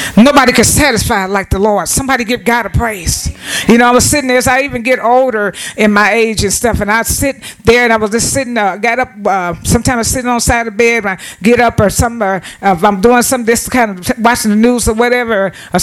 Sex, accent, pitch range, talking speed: female, American, 195-240 Hz, 265 wpm